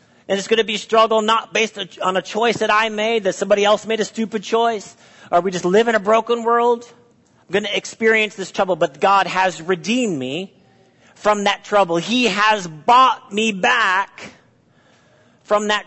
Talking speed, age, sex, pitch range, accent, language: 190 wpm, 40-59, male, 170-225 Hz, American, English